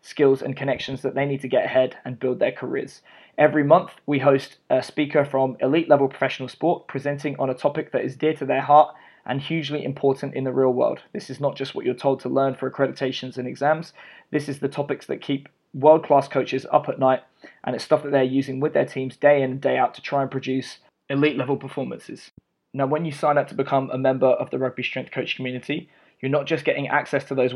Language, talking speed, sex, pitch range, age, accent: English, 235 wpm, male, 130-145 Hz, 20-39, British